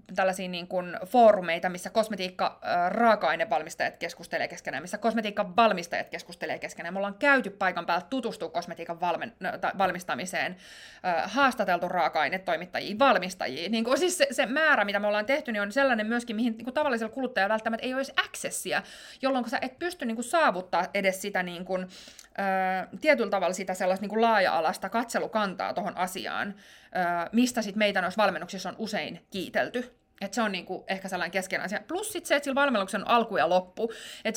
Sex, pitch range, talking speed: female, 185-245 Hz, 160 wpm